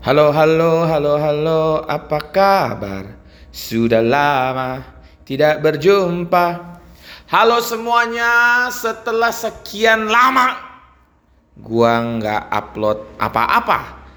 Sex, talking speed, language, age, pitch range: male, 80 wpm, Indonesian, 30-49, 110-165 Hz